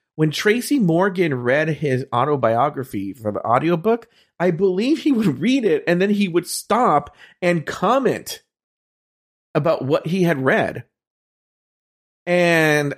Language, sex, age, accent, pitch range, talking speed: English, male, 40-59, American, 140-210 Hz, 130 wpm